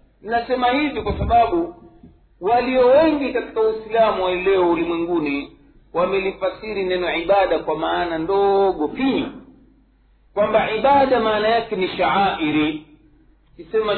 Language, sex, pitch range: Swahili, male, 165-240 Hz